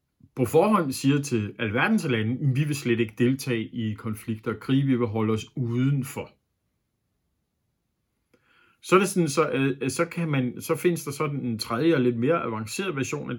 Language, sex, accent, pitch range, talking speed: Danish, male, native, 120-160 Hz, 175 wpm